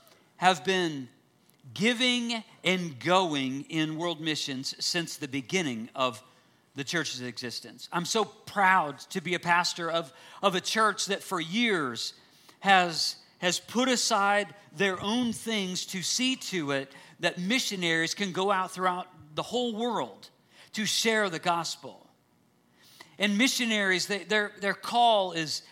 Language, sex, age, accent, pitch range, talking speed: English, male, 50-69, American, 170-210 Hz, 140 wpm